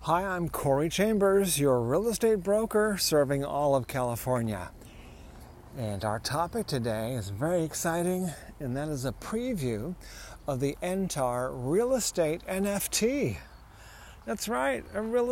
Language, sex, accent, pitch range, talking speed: English, male, American, 115-165 Hz, 135 wpm